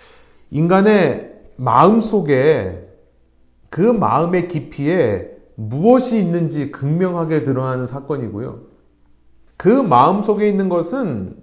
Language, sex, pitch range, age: Korean, male, 120-185 Hz, 40-59